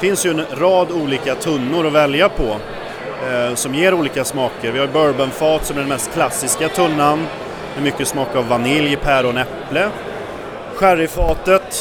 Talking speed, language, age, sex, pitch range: 170 wpm, Swedish, 30-49, male, 135-170 Hz